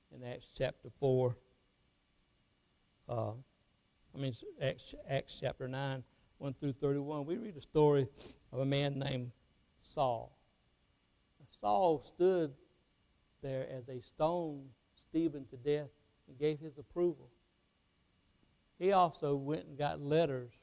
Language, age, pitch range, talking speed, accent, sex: English, 60-79, 130-150 Hz, 120 wpm, American, male